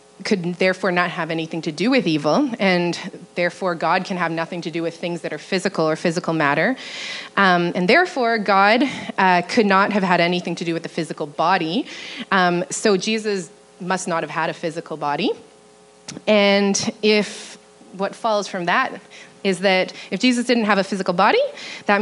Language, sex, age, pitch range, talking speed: English, female, 20-39, 165-205 Hz, 185 wpm